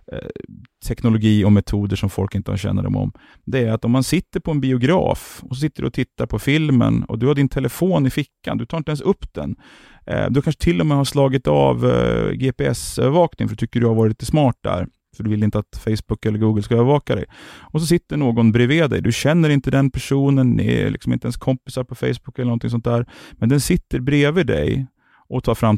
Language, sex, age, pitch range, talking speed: Swedish, male, 30-49, 105-135 Hz, 240 wpm